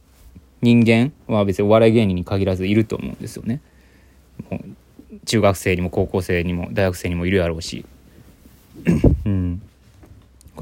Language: Japanese